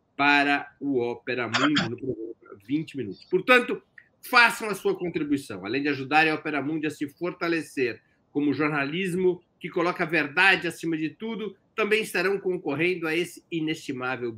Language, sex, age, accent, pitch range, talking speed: Portuguese, male, 50-69, Brazilian, 135-180 Hz, 145 wpm